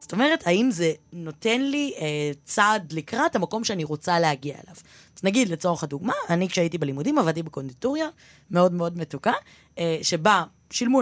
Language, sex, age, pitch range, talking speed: Hebrew, female, 20-39, 155-215 Hz, 160 wpm